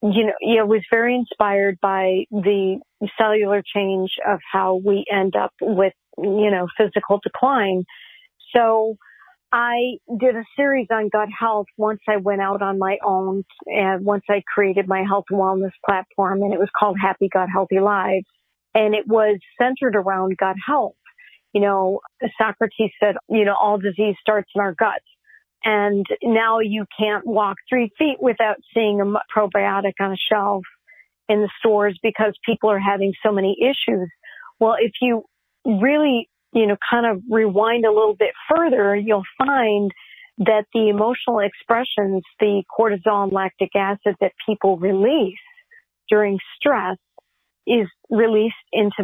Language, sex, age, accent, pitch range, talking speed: English, female, 40-59, American, 195-225 Hz, 160 wpm